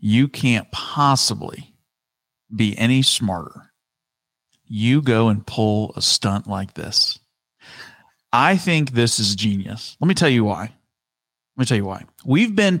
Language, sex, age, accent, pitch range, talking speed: English, male, 40-59, American, 100-130 Hz, 145 wpm